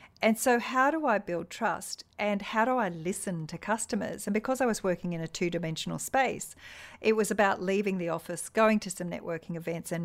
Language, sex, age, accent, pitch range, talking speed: English, female, 50-69, Australian, 170-215 Hz, 210 wpm